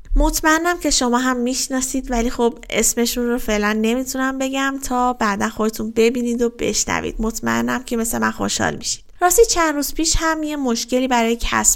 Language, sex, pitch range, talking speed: Persian, female, 210-245 Hz, 170 wpm